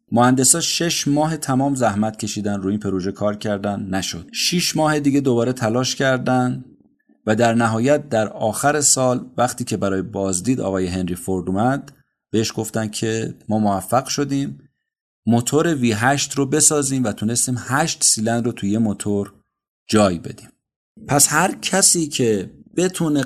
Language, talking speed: Persian, 145 wpm